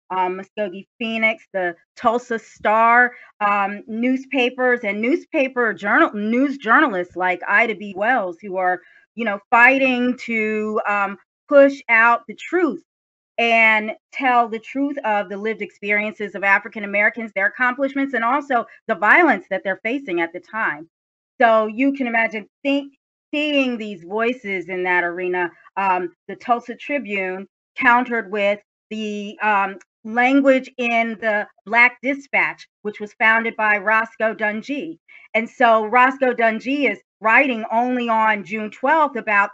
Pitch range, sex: 200-250 Hz, female